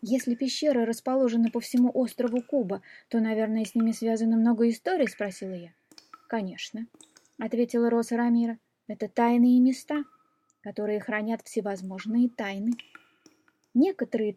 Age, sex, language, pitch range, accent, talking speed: 20-39, female, Russian, 215-270 Hz, native, 115 wpm